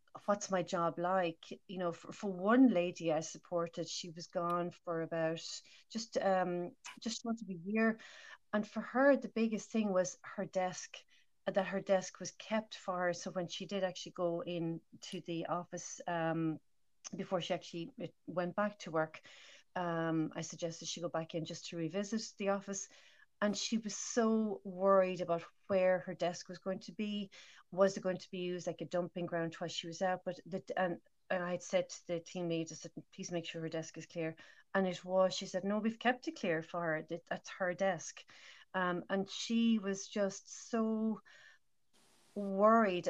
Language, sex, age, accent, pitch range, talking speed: English, female, 40-59, Irish, 170-200 Hz, 190 wpm